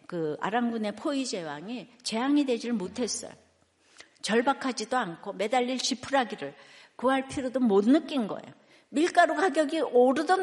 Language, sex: Korean, female